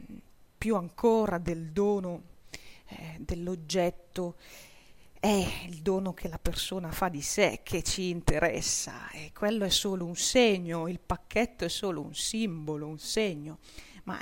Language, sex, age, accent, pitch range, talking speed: Italian, female, 40-59, native, 160-190 Hz, 135 wpm